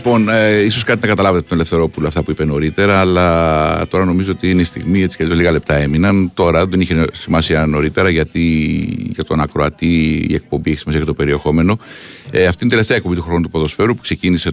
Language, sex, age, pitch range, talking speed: Greek, male, 50-69, 80-95 Hz, 210 wpm